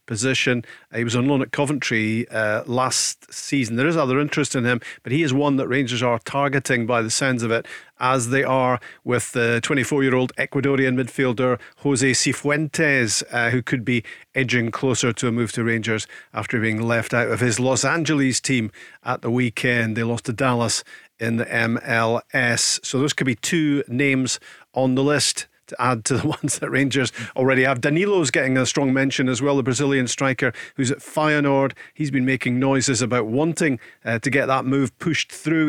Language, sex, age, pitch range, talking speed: English, male, 40-59, 125-145 Hz, 195 wpm